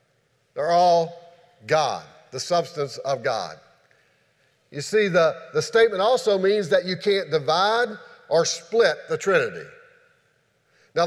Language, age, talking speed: English, 50-69, 125 wpm